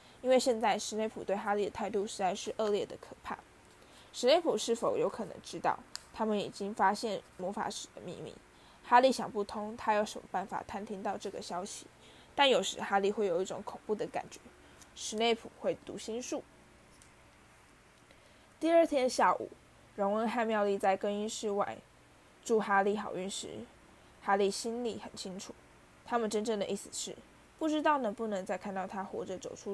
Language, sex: Chinese, female